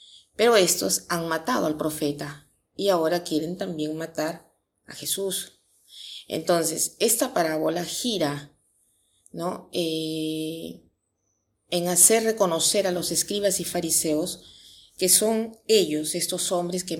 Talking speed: 115 wpm